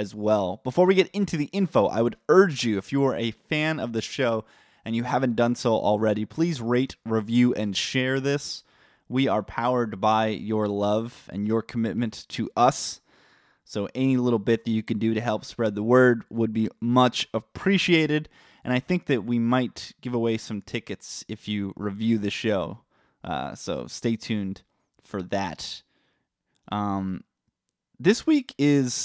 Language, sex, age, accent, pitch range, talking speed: English, male, 20-39, American, 110-125 Hz, 175 wpm